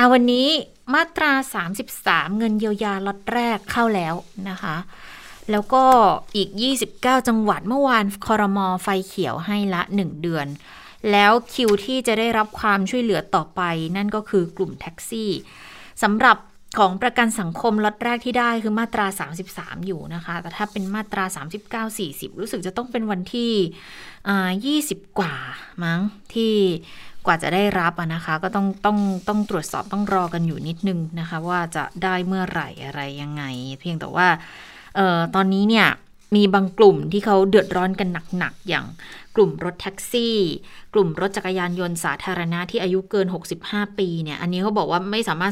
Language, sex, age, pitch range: Thai, female, 20-39, 175-210 Hz